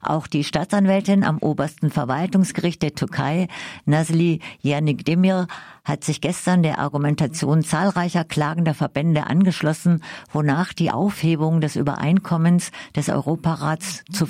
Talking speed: 120 wpm